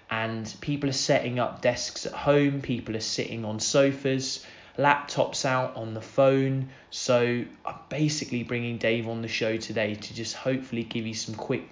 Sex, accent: male, British